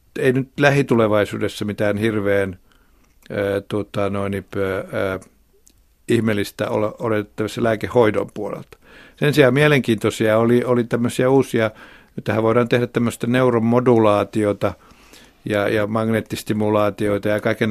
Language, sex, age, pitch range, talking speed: Finnish, male, 60-79, 100-115 Hz, 100 wpm